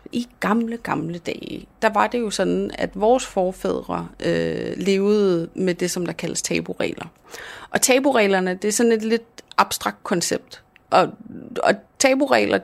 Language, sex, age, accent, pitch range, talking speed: Danish, female, 30-49, native, 175-220 Hz, 150 wpm